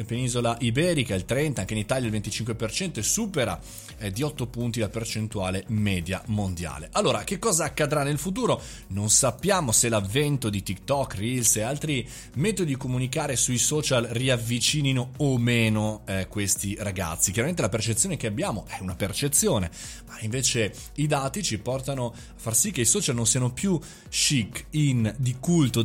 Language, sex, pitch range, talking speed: Italian, male, 110-150 Hz, 165 wpm